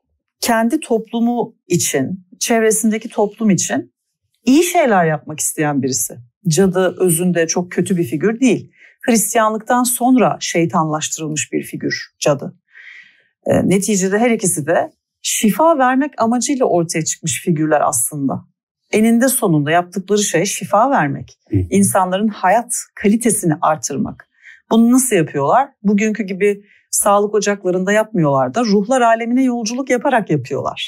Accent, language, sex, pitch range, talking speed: native, Turkish, female, 175-235 Hz, 115 wpm